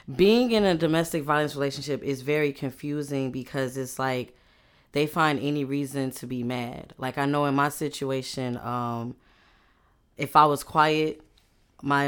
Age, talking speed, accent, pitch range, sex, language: 10-29, 155 wpm, American, 125-145 Hz, female, English